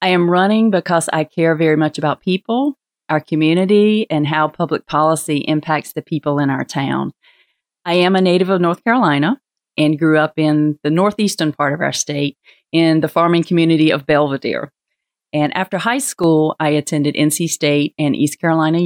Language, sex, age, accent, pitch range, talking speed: English, female, 40-59, American, 150-170 Hz, 180 wpm